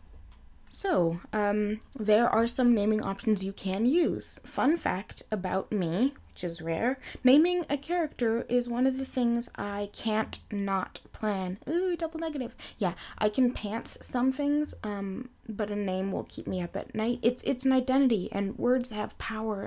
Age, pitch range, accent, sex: 20-39, 190-255 Hz, American, female